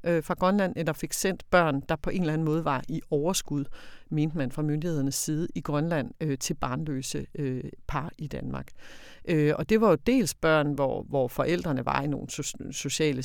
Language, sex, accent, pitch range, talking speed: Danish, female, native, 140-180 Hz, 205 wpm